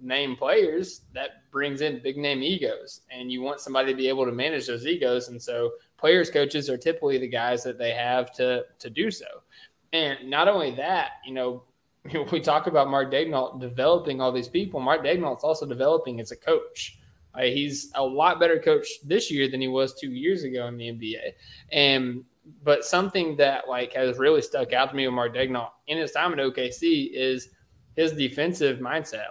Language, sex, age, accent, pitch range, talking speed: English, male, 20-39, American, 125-160 Hz, 200 wpm